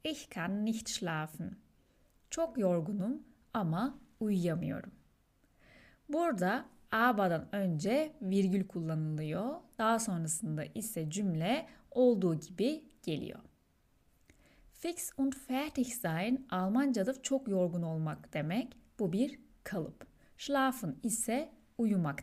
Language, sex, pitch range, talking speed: Turkish, female, 175-255 Hz, 95 wpm